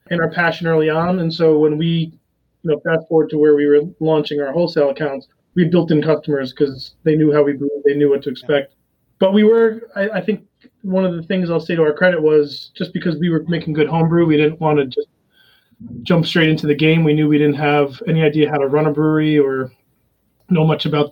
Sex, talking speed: male, 240 wpm